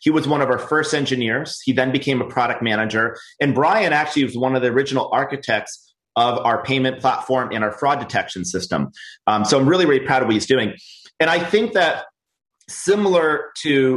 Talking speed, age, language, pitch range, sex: 200 wpm, 30-49, English, 120-150 Hz, male